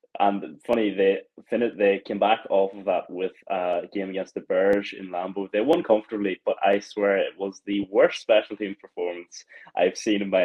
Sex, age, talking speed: male, 20-39, 200 wpm